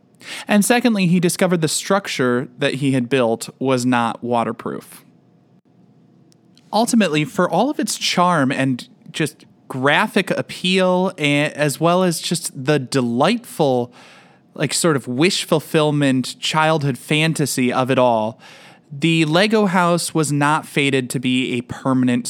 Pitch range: 130-165 Hz